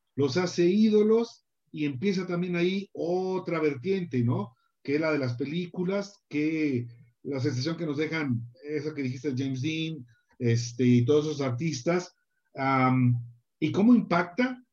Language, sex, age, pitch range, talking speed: Italian, male, 50-69, 130-185 Hz, 145 wpm